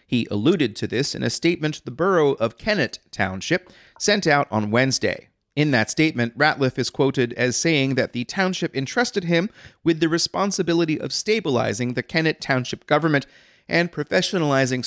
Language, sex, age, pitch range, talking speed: English, male, 30-49, 110-160 Hz, 160 wpm